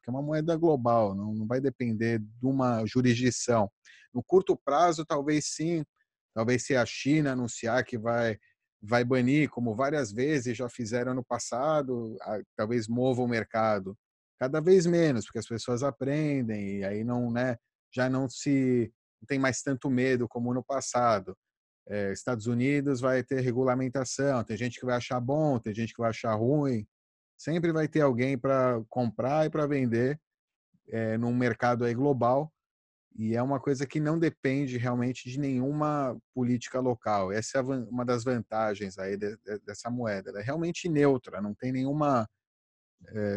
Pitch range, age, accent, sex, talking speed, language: 115-140 Hz, 30-49, Brazilian, male, 165 wpm, Portuguese